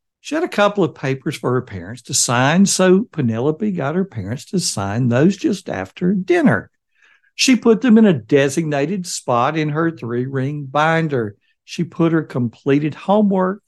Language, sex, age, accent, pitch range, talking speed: English, male, 60-79, American, 135-205 Hz, 165 wpm